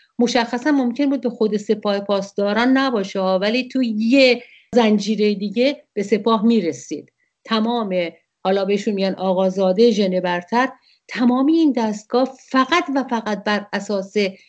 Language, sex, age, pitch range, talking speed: English, female, 50-69, 210-260 Hz, 130 wpm